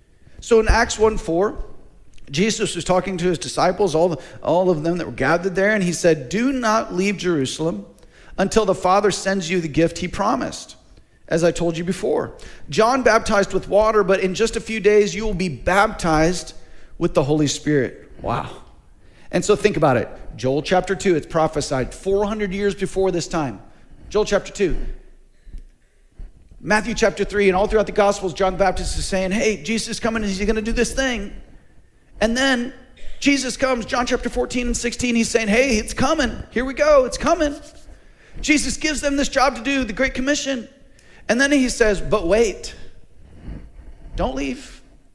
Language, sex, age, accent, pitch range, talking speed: English, male, 40-59, American, 165-225 Hz, 180 wpm